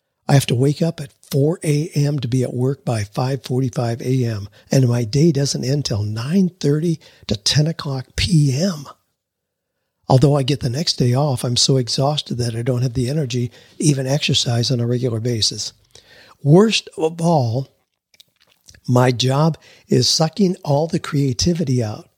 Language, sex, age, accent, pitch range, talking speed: English, male, 50-69, American, 120-155 Hz, 160 wpm